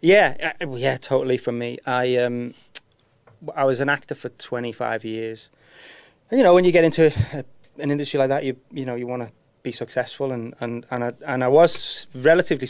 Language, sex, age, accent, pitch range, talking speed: English, male, 30-49, British, 115-135 Hz, 205 wpm